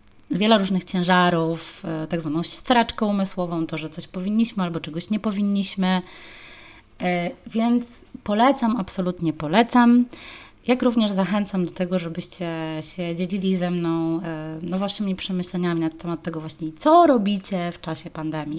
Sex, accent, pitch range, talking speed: female, native, 160-200 Hz, 130 wpm